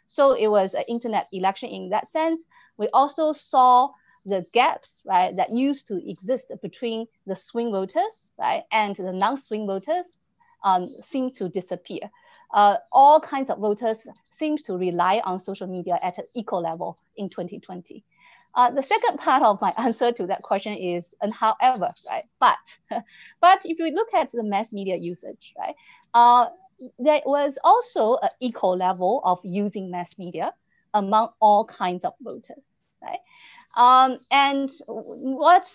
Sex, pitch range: female, 195-290 Hz